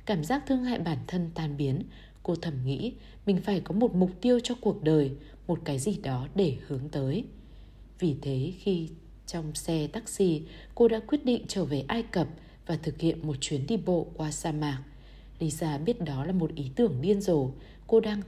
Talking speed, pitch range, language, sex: 205 wpm, 145-200 Hz, Vietnamese, female